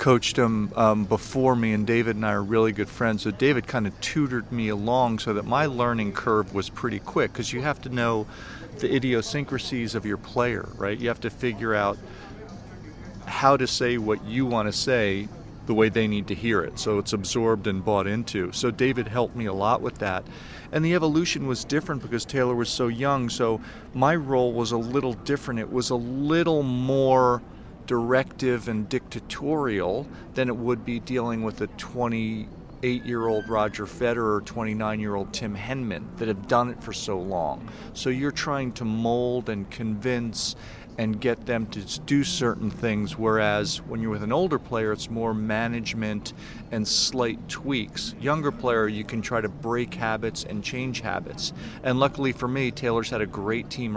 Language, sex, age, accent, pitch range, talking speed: English, male, 40-59, American, 110-125 Hz, 190 wpm